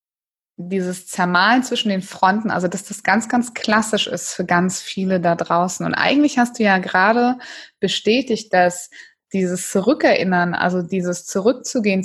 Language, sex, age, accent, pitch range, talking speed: German, female, 20-39, German, 185-235 Hz, 150 wpm